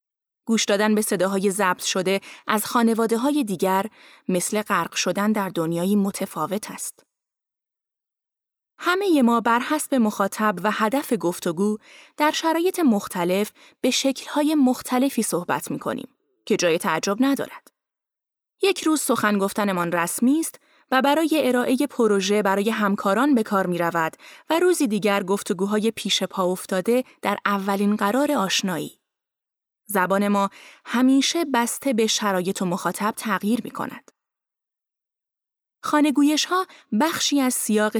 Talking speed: 125 wpm